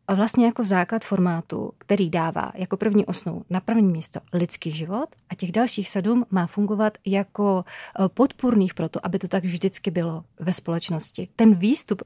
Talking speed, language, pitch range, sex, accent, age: 165 wpm, Czech, 185-220 Hz, female, native, 30-49